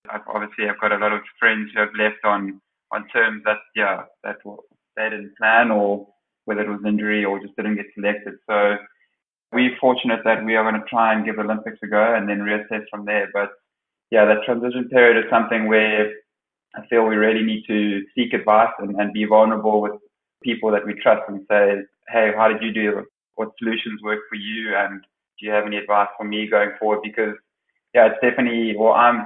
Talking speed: 205 wpm